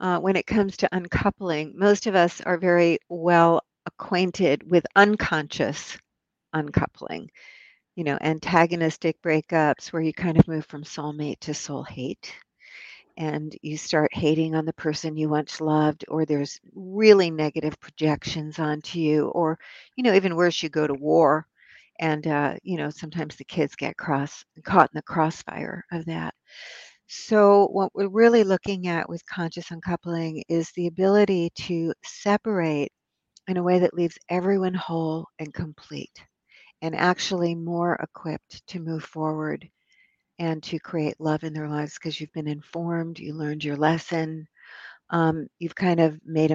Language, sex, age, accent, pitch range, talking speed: English, female, 60-79, American, 155-180 Hz, 155 wpm